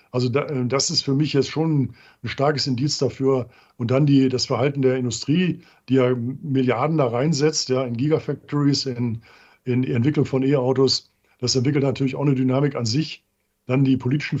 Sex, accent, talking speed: male, German, 180 wpm